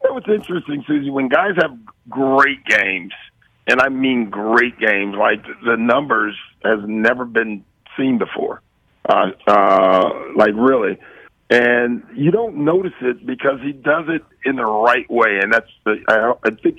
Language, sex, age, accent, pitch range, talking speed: English, male, 50-69, American, 120-165 Hz, 160 wpm